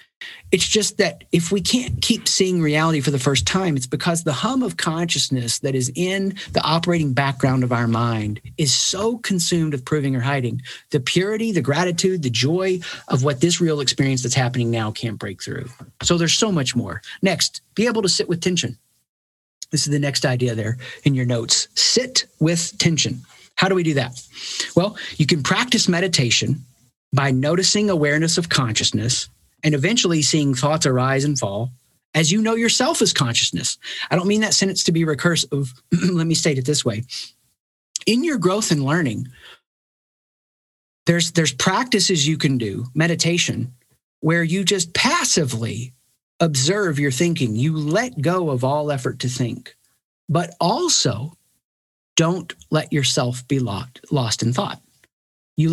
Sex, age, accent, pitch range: male, 40-59, American, 130-180 Hz